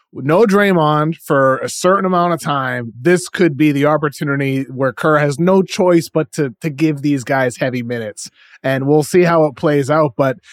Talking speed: 195 wpm